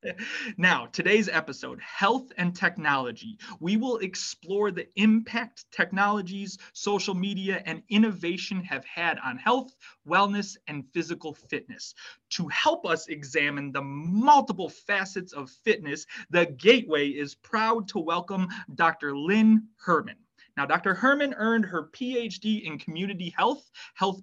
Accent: American